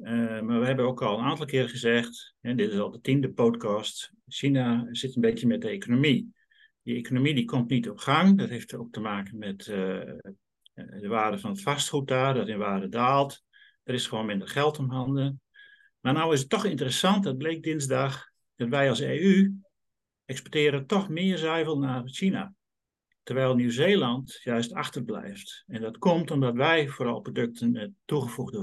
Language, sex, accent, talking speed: Dutch, male, Dutch, 180 wpm